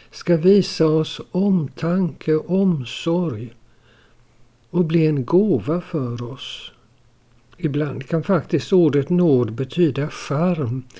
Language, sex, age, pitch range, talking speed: Swedish, male, 60-79, 125-175 Hz, 115 wpm